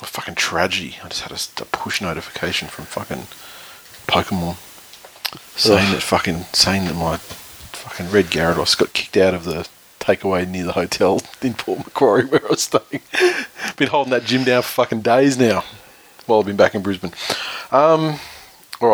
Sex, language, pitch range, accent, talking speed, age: male, English, 95-120 Hz, Australian, 175 wpm, 30-49